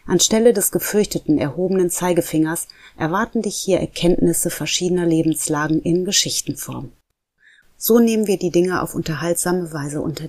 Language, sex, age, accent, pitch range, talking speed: German, female, 30-49, German, 155-180 Hz, 130 wpm